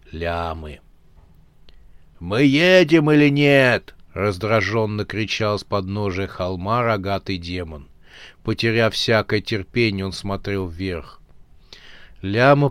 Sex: male